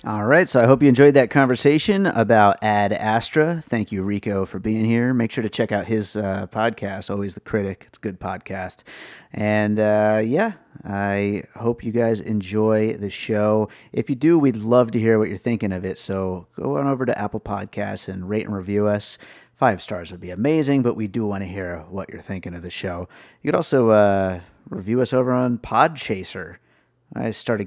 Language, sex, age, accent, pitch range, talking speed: English, male, 30-49, American, 100-120 Hz, 205 wpm